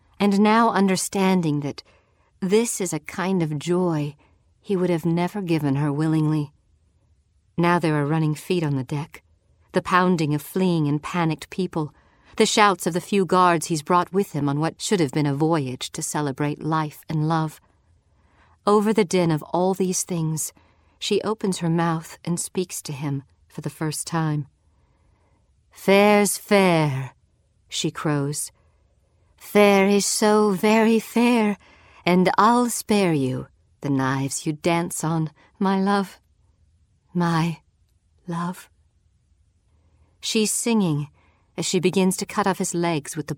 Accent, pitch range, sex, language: American, 135-180 Hz, female, English